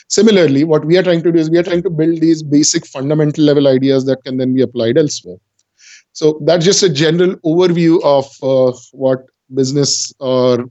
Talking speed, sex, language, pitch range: 195 wpm, male, English, 135-170 Hz